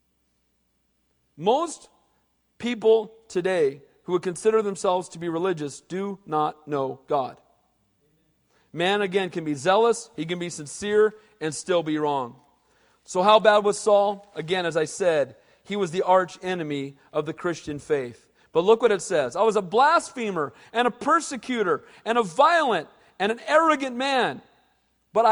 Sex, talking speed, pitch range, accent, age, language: male, 155 wpm, 175-265 Hz, American, 40-59, English